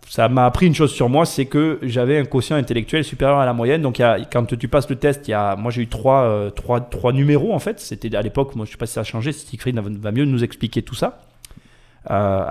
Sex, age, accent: male, 30-49, French